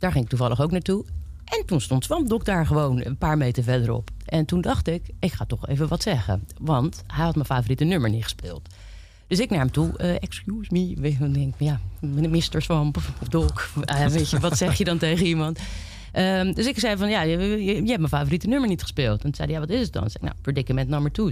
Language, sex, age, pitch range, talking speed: Dutch, female, 30-49, 115-175 Hz, 255 wpm